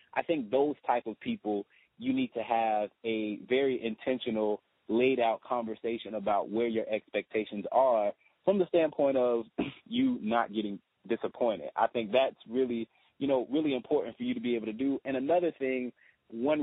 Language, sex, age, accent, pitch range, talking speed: English, male, 20-39, American, 110-130 Hz, 170 wpm